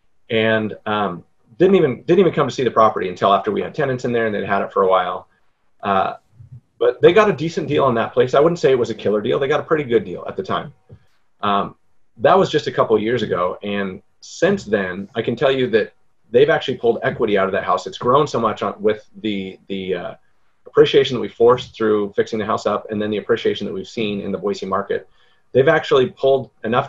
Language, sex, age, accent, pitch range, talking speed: English, male, 30-49, American, 100-145 Hz, 245 wpm